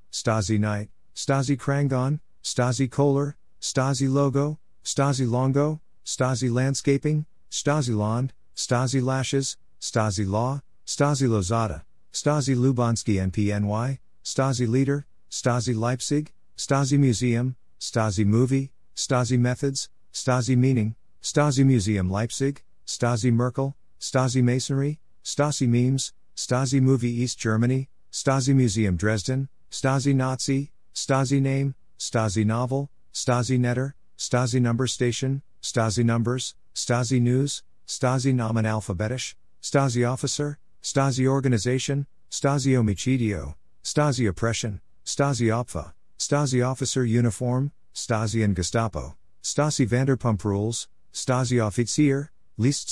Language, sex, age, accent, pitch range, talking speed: English, male, 50-69, American, 110-135 Hz, 105 wpm